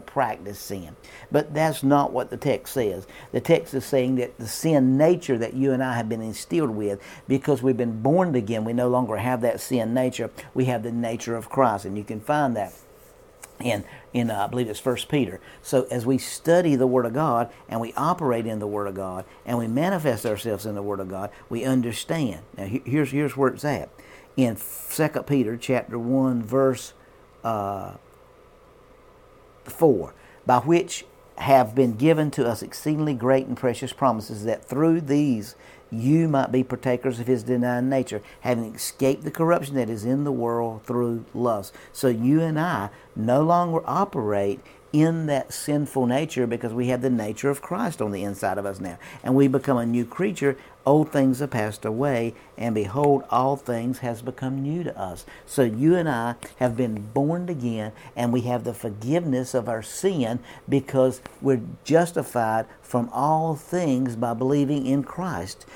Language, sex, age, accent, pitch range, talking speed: English, male, 50-69, American, 115-140 Hz, 185 wpm